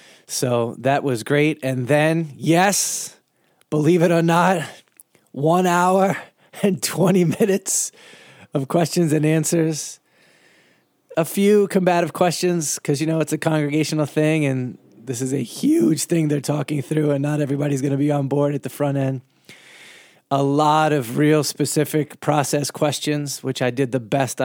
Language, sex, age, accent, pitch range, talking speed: English, male, 20-39, American, 130-160 Hz, 155 wpm